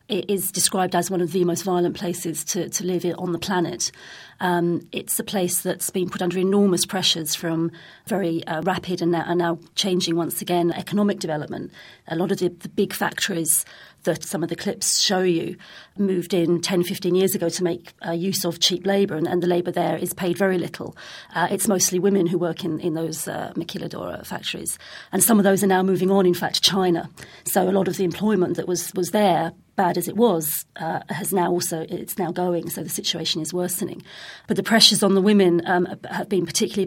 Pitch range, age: 170-195 Hz, 40-59